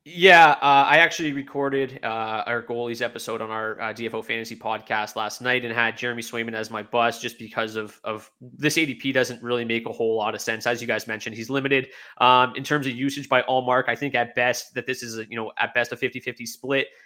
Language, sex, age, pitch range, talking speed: English, male, 20-39, 115-140 Hz, 240 wpm